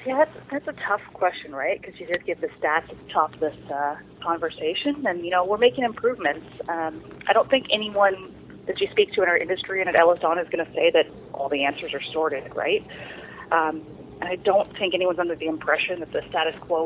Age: 30-49